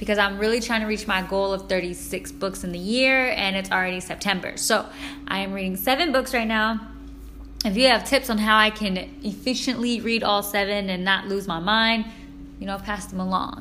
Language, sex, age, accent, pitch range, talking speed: English, female, 20-39, American, 180-220 Hz, 210 wpm